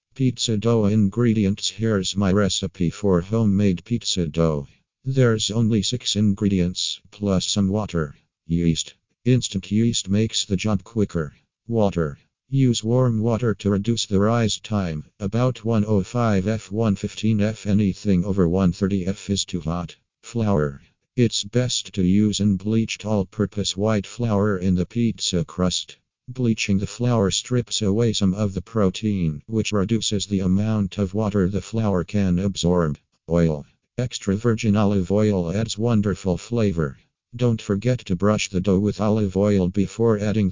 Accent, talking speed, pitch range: American, 140 wpm, 95-110 Hz